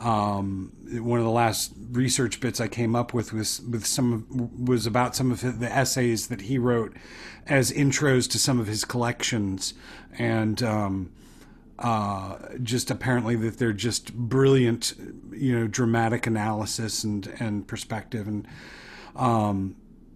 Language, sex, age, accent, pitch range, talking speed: English, male, 40-59, American, 110-130 Hz, 145 wpm